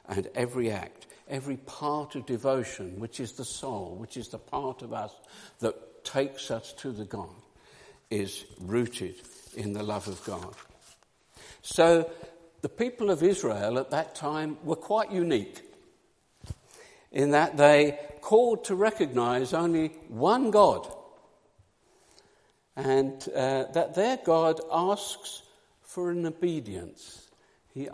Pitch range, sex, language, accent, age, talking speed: 120-170 Hz, male, English, British, 60-79, 130 wpm